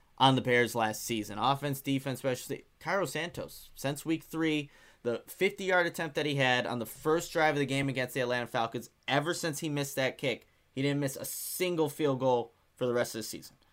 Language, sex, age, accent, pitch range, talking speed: English, male, 10-29, American, 120-150 Hz, 220 wpm